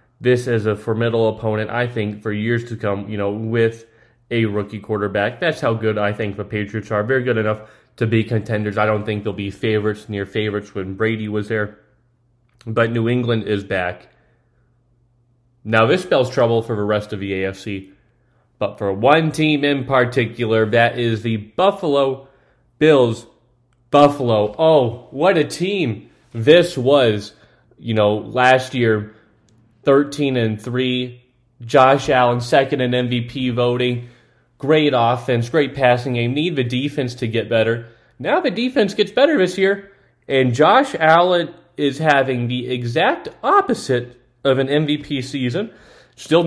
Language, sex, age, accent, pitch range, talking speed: English, male, 30-49, American, 110-130 Hz, 155 wpm